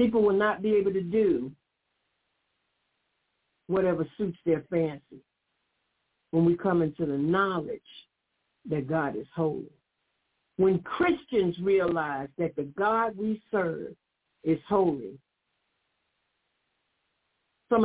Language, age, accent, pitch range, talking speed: English, 60-79, American, 160-235 Hz, 110 wpm